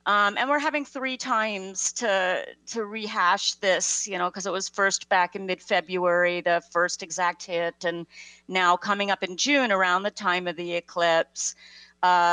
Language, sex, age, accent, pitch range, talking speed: English, female, 40-59, American, 165-185 Hz, 175 wpm